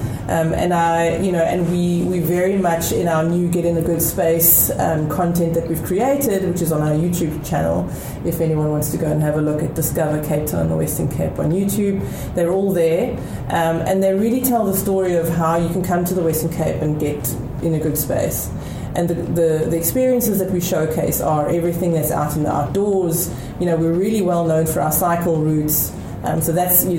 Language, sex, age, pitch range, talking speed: English, female, 30-49, 155-175 Hz, 230 wpm